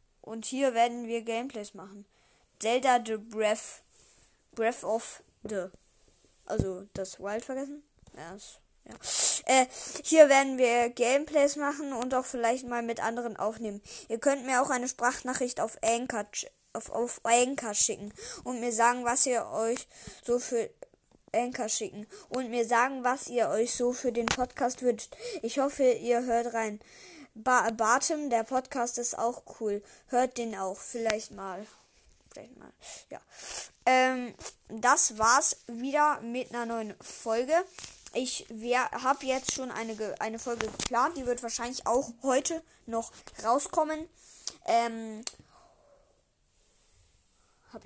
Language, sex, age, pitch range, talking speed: German, female, 20-39, 220-265 Hz, 140 wpm